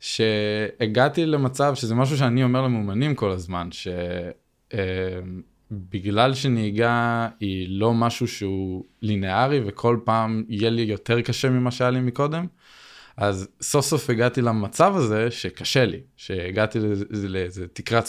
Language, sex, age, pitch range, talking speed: Hebrew, male, 20-39, 95-120 Hz, 125 wpm